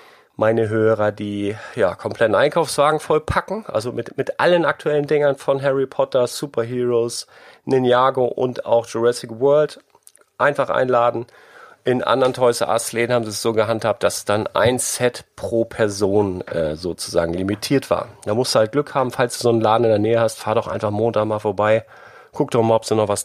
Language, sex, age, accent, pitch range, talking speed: German, male, 40-59, German, 110-145 Hz, 180 wpm